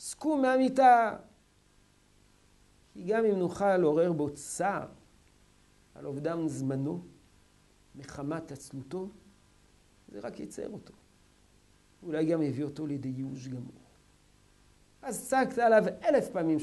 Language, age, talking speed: Hebrew, 50-69, 105 wpm